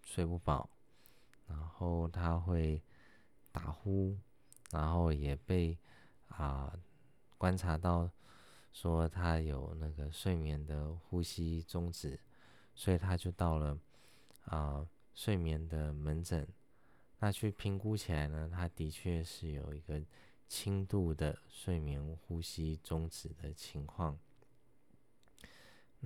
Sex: male